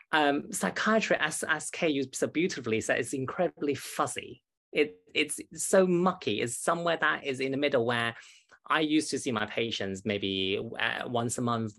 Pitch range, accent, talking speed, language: 110-145 Hz, British, 185 wpm, English